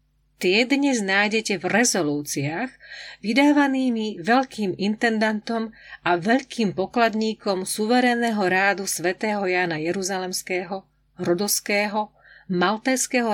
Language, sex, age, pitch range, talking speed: Slovak, female, 40-59, 160-230 Hz, 80 wpm